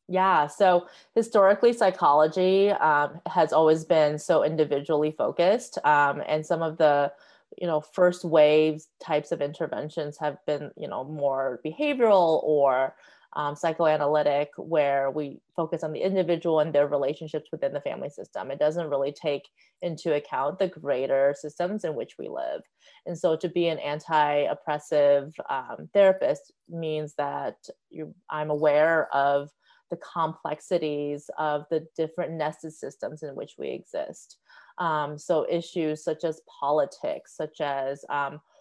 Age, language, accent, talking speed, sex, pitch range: 30-49, English, American, 145 wpm, female, 145-175 Hz